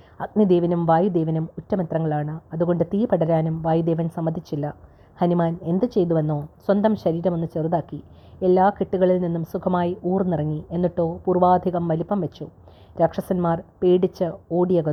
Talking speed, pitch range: 110 wpm, 165-185 Hz